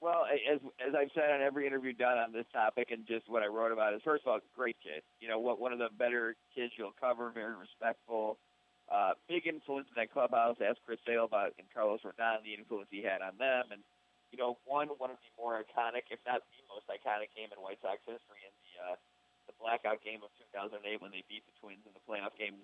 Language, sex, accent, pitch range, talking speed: English, male, American, 100-120 Hz, 245 wpm